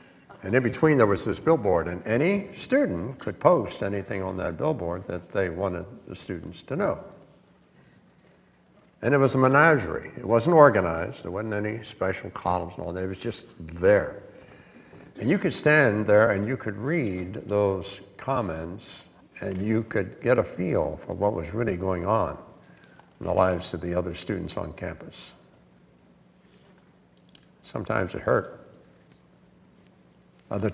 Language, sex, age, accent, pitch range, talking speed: English, male, 60-79, American, 90-115 Hz, 155 wpm